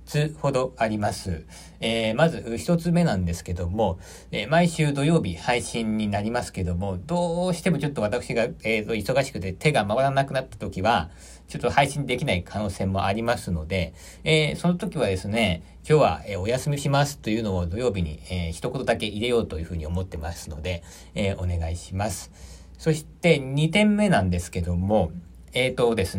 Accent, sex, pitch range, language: native, male, 85-140 Hz, Japanese